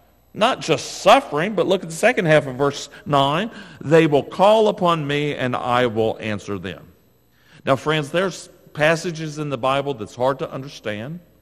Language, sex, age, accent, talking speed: English, male, 50-69, American, 175 wpm